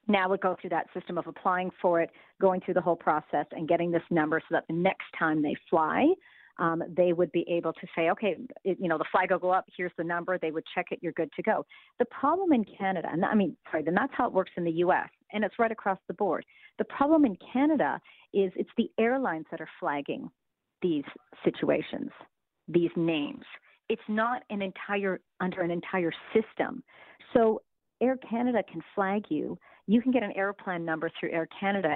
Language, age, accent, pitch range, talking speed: English, 40-59, American, 165-220 Hz, 215 wpm